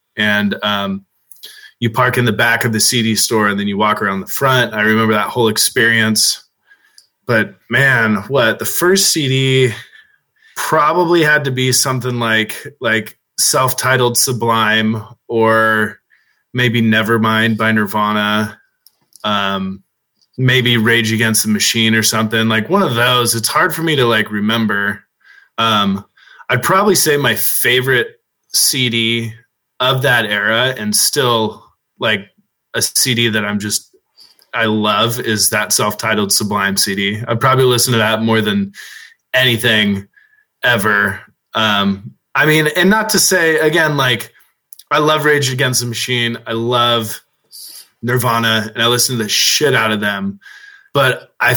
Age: 20-39